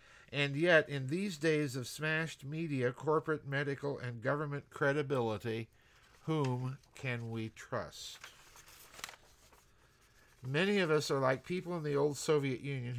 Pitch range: 125-150 Hz